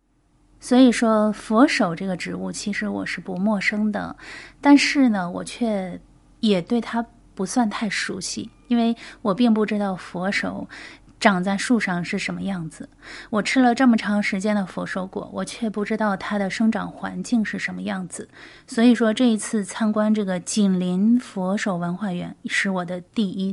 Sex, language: female, Chinese